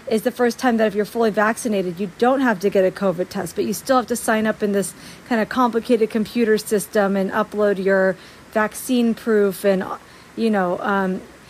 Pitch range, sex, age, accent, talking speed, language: 205-265 Hz, female, 40-59, American, 210 wpm, English